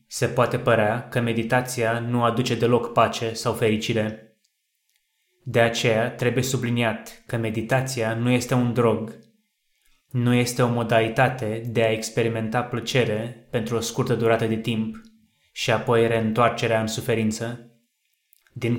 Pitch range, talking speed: 115-125 Hz, 130 wpm